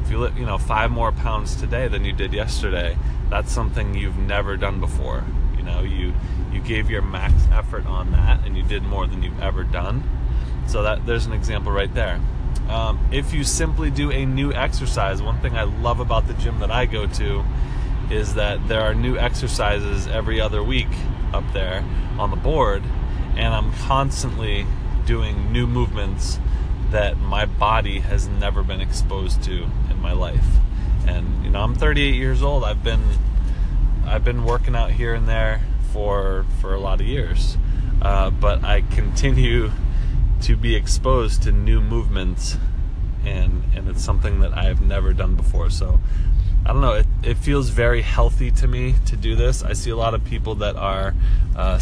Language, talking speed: English, 185 wpm